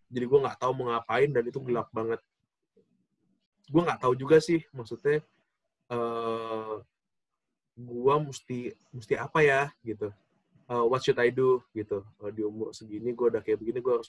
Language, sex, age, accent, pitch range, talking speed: Indonesian, male, 20-39, native, 120-165 Hz, 165 wpm